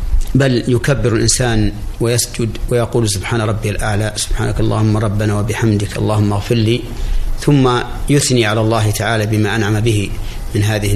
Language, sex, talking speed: Arabic, male, 135 wpm